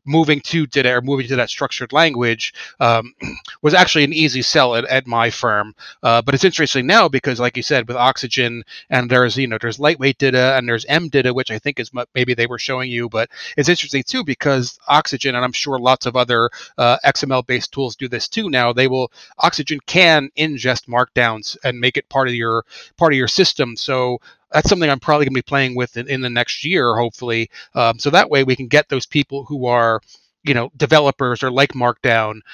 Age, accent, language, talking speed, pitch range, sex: 30-49, American, English, 220 wpm, 125-150 Hz, male